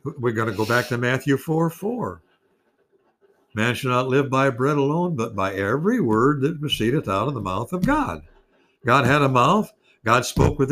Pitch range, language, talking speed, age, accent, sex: 120-165 Hz, English, 190 wpm, 60-79, American, male